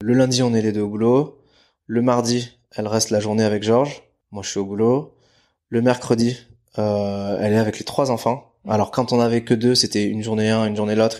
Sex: male